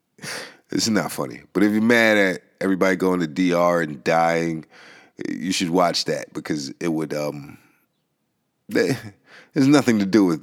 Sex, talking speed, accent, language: male, 160 wpm, American, English